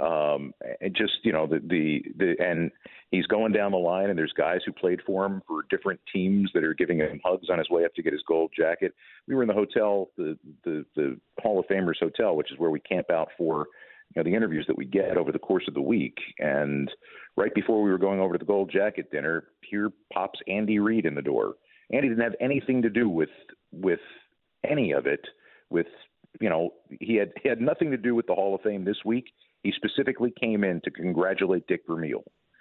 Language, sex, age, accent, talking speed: English, male, 50-69, American, 225 wpm